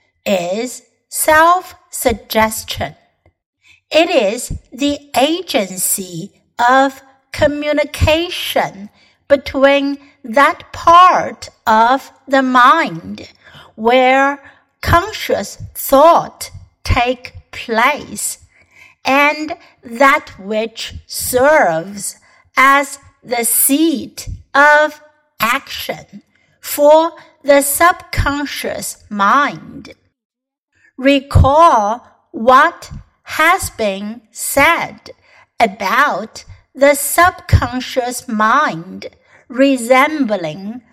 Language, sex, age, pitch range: Chinese, female, 60-79, 240-305 Hz